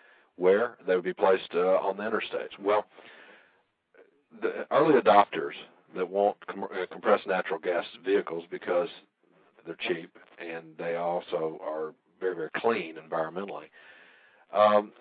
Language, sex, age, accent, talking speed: English, male, 50-69, American, 130 wpm